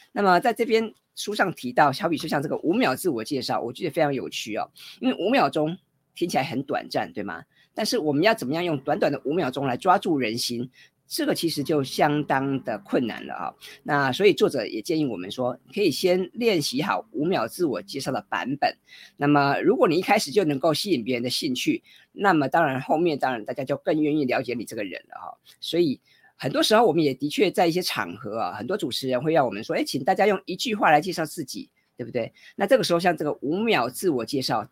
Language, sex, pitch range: Chinese, female, 140-195 Hz